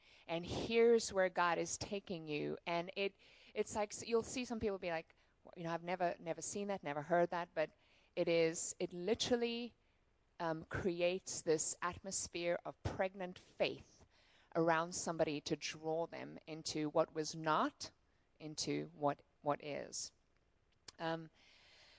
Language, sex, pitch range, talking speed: English, female, 150-195 Hz, 150 wpm